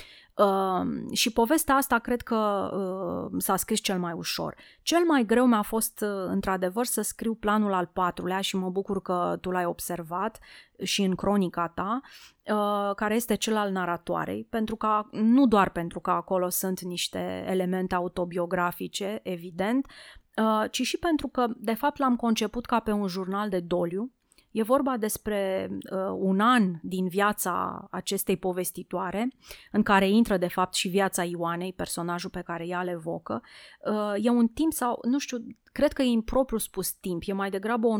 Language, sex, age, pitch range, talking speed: Romanian, female, 30-49, 180-215 Hz, 165 wpm